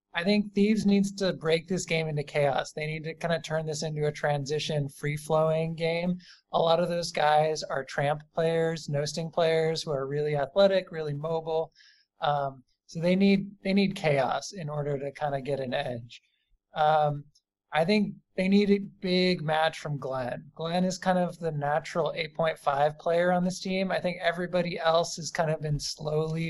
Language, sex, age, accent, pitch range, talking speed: English, male, 20-39, American, 150-180 Hz, 190 wpm